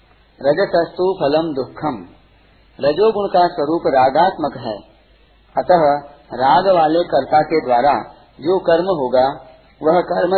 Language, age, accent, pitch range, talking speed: Hindi, 40-59, native, 135-175 Hz, 110 wpm